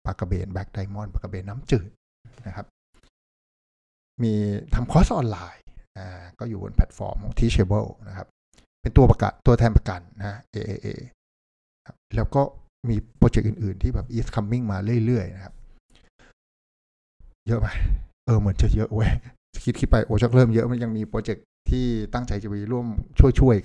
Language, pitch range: Thai, 100-125 Hz